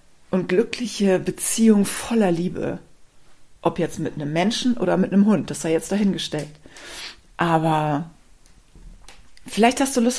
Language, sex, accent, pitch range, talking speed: German, female, German, 175-225 Hz, 135 wpm